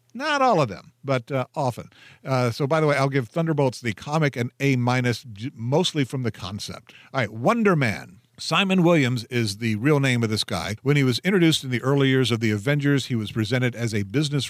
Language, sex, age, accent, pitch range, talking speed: English, male, 50-69, American, 115-145 Hz, 220 wpm